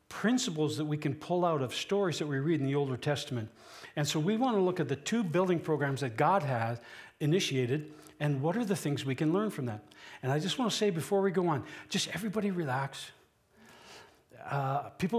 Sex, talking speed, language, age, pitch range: male, 215 wpm, English, 60-79, 120-165 Hz